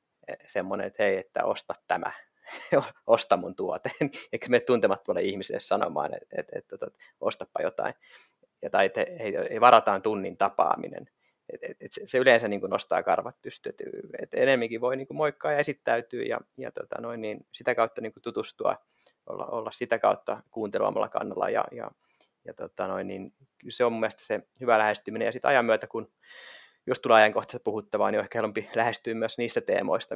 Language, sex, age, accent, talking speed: Finnish, male, 30-49, native, 175 wpm